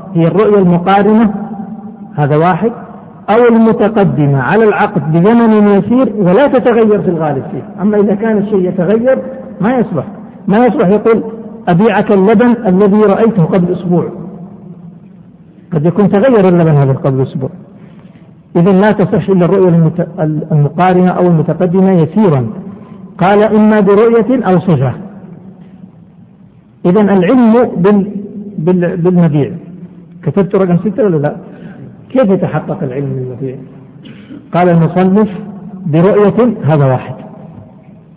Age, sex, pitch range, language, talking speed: 60-79, male, 170-205 Hz, Arabic, 110 wpm